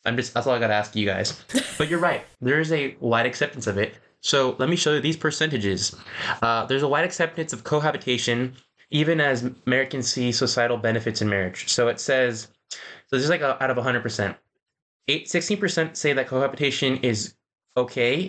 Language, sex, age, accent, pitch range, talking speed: English, male, 20-39, American, 110-140 Hz, 205 wpm